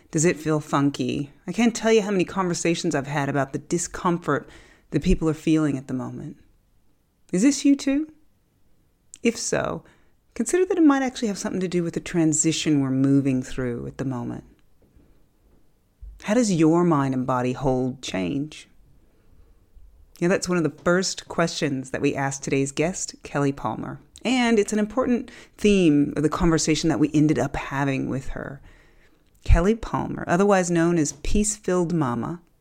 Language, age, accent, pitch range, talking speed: English, 30-49, American, 140-180 Hz, 165 wpm